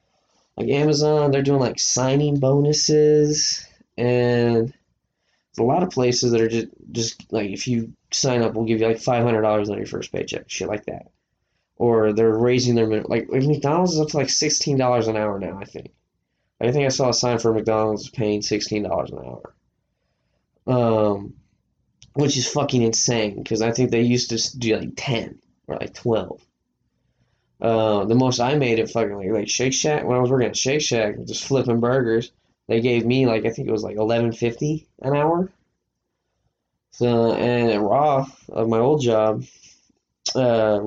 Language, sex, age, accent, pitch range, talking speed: English, male, 10-29, American, 110-135 Hz, 185 wpm